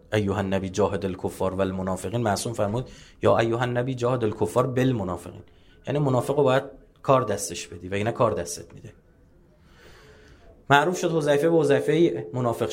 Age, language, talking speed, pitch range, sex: 30-49, Persian, 140 wpm, 100-140 Hz, male